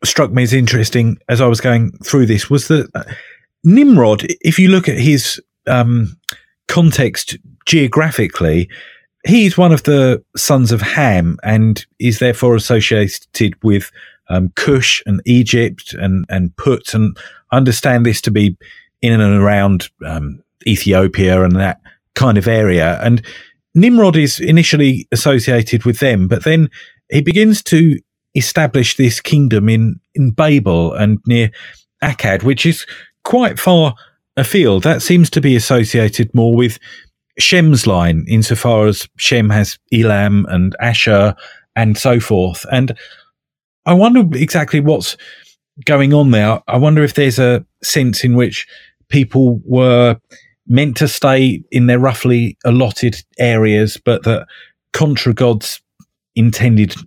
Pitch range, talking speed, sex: 105-145 Hz, 140 wpm, male